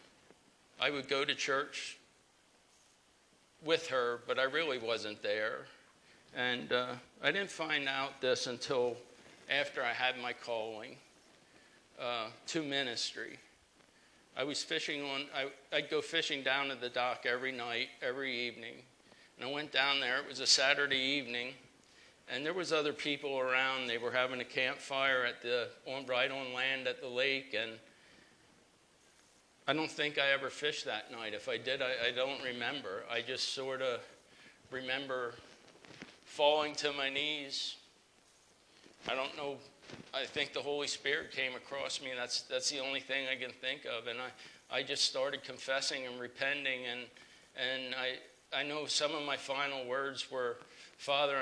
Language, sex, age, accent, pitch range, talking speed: English, male, 50-69, American, 125-140 Hz, 160 wpm